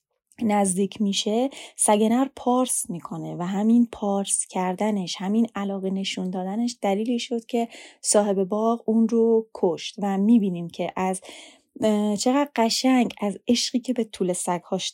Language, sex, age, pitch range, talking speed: Persian, female, 30-49, 190-240 Hz, 135 wpm